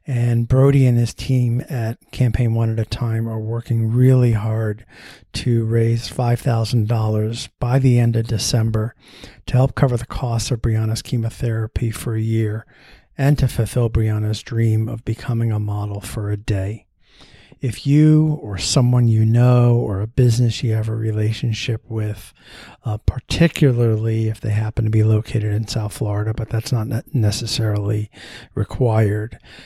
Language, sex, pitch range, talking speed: English, male, 110-125 Hz, 155 wpm